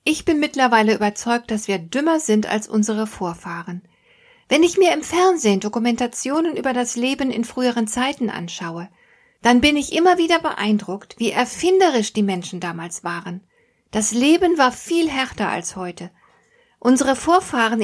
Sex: female